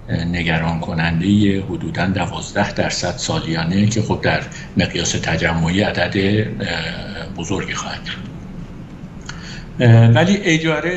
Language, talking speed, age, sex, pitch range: Persian, 90 wpm, 50-69, male, 95-120 Hz